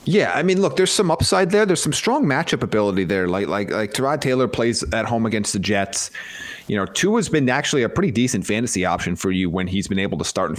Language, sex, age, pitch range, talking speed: English, male, 30-49, 95-125 Hz, 255 wpm